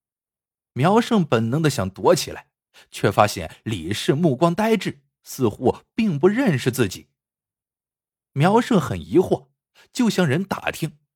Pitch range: 115-185 Hz